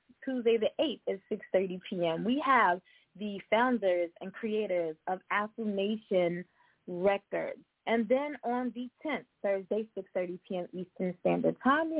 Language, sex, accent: English, female, American